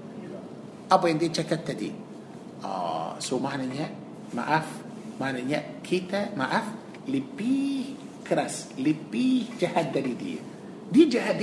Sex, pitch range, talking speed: male, 170-215 Hz, 100 wpm